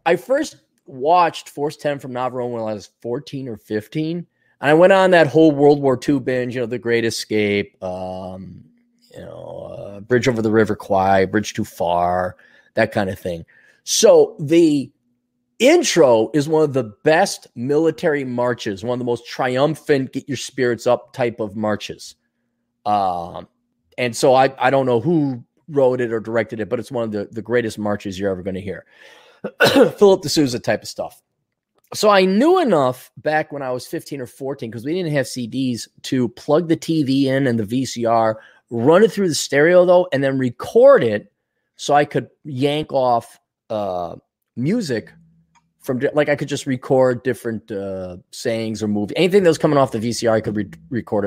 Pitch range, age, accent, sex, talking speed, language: 115-155 Hz, 30-49, American, male, 185 wpm, English